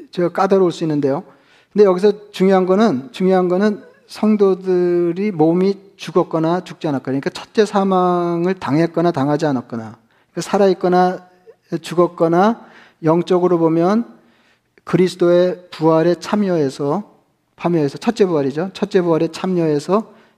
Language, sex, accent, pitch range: Korean, male, native, 155-190 Hz